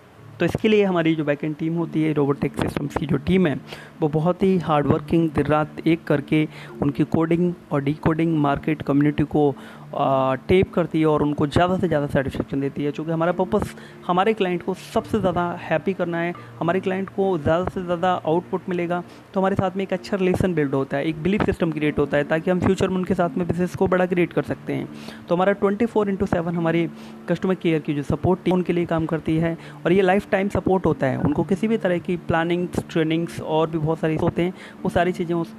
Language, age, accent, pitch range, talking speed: Hindi, 30-49, native, 150-180 Hz, 215 wpm